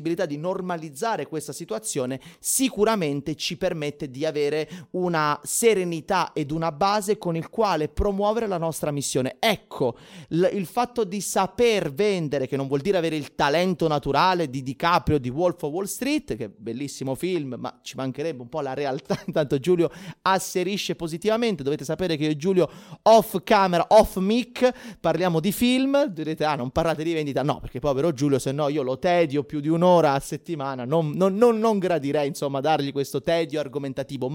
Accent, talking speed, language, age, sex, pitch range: native, 175 wpm, Italian, 30-49, male, 150-205 Hz